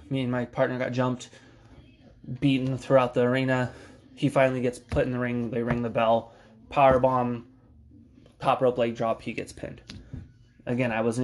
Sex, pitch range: male, 120-135 Hz